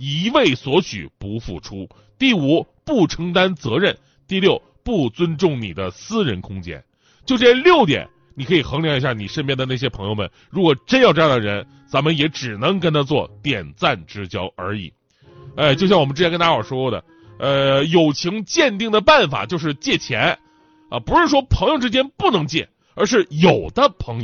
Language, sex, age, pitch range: Chinese, male, 30-49, 130-210 Hz